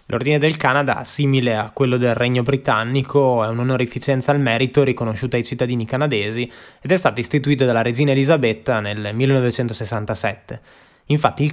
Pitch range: 110-130 Hz